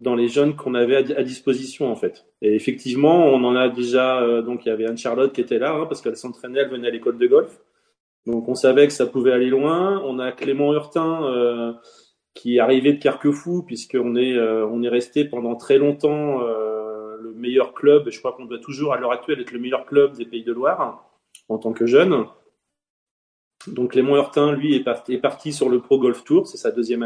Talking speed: 235 wpm